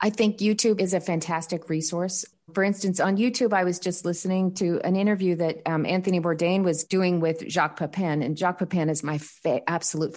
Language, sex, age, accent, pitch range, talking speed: English, female, 40-59, American, 160-195 Hz, 200 wpm